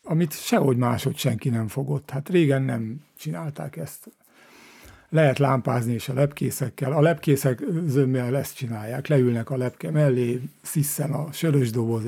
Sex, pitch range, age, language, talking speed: male, 120-145 Hz, 60-79, Hungarian, 140 wpm